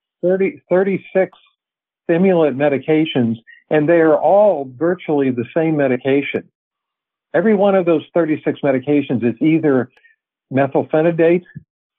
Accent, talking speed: American, 100 wpm